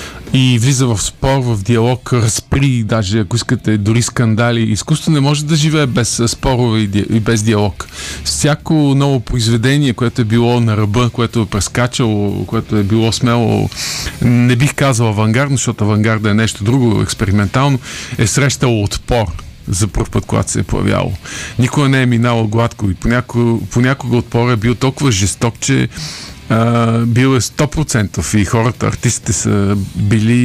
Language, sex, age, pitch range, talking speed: Bulgarian, male, 50-69, 105-125 Hz, 160 wpm